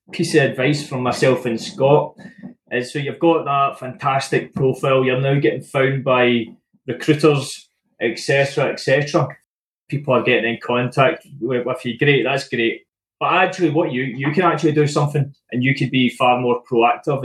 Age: 20-39